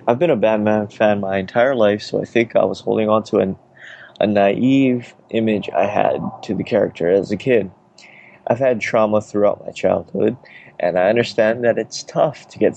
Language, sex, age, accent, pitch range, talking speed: English, male, 20-39, American, 100-115 Hz, 195 wpm